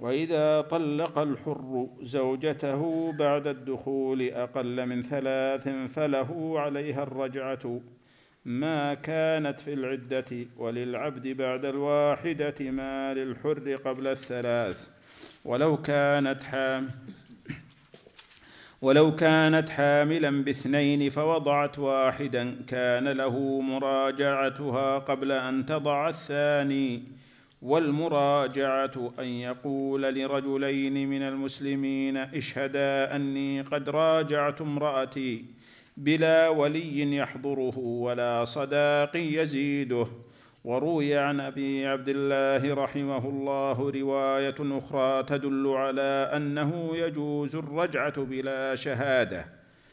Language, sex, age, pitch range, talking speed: Arabic, male, 50-69, 130-145 Hz, 85 wpm